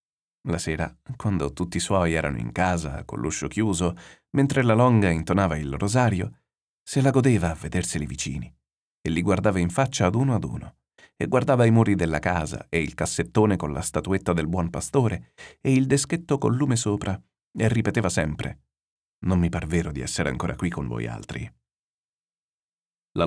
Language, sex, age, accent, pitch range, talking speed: Italian, male, 40-59, native, 80-110 Hz, 175 wpm